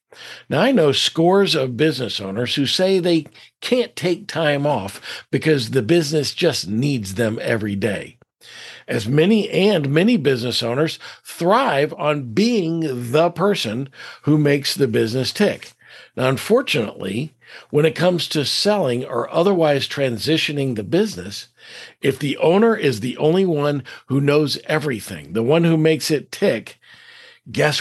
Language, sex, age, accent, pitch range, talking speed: English, male, 50-69, American, 115-160 Hz, 145 wpm